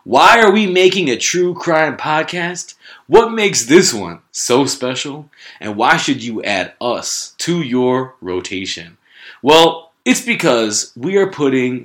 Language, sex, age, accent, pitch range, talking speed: English, male, 20-39, American, 105-170 Hz, 145 wpm